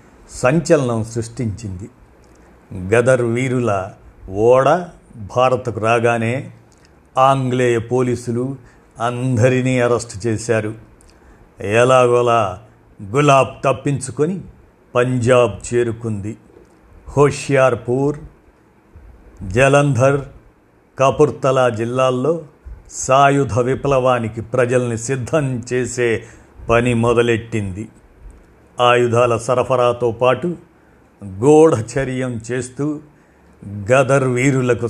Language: Telugu